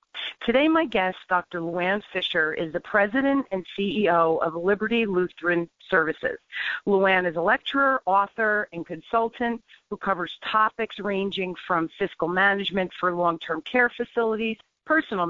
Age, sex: 40-59, female